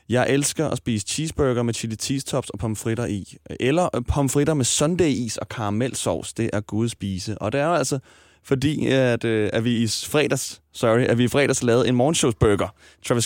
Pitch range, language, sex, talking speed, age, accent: 100-135 Hz, Danish, male, 165 wpm, 20-39, native